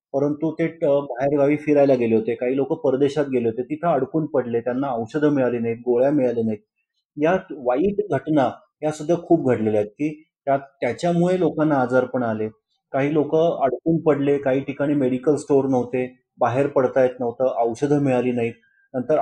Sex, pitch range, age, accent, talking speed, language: male, 125-160 Hz, 30-49, native, 85 wpm, Marathi